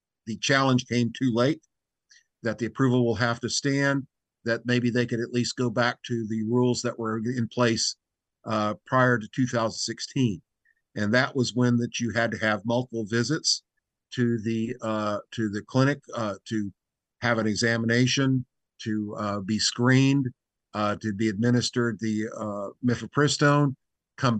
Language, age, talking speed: English, 50-69, 160 wpm